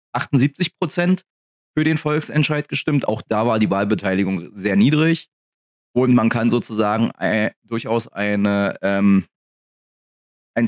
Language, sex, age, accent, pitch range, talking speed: German, male, 30-49, German, 100-130 Hz, 110 wpm